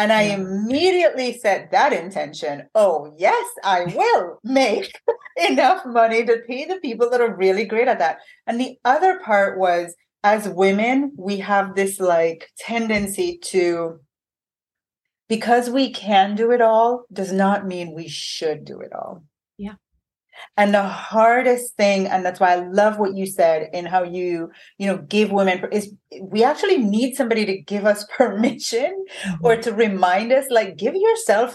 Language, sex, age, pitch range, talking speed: English, female, 30-49, 190-265 Hz, 160 wpm